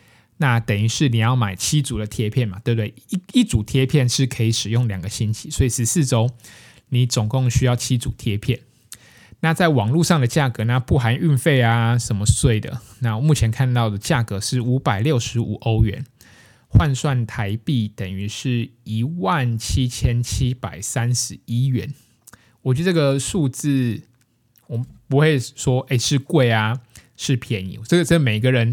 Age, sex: 20-39, male